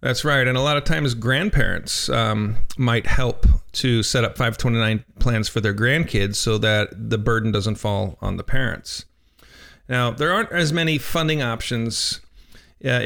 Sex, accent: male, American